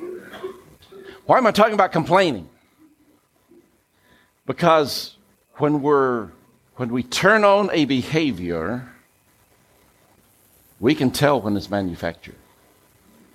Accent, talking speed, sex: American, 90 wpm, male